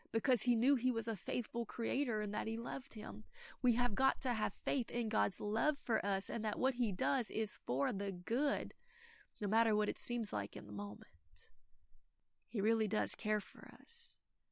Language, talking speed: English, 200 wpm